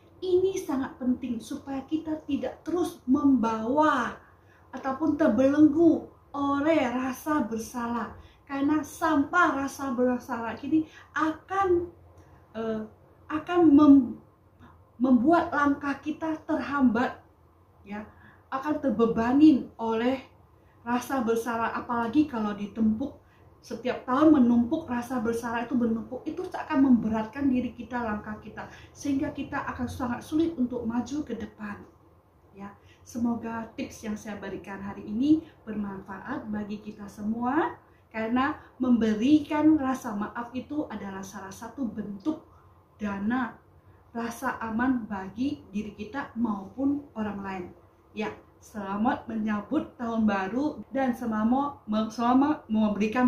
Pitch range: 220-285 Hz